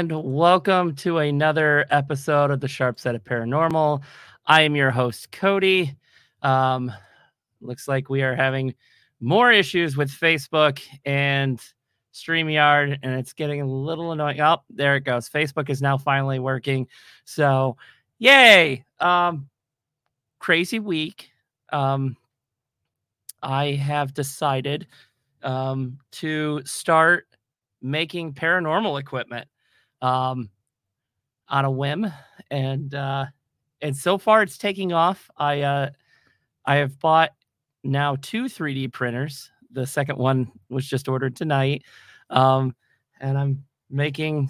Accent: American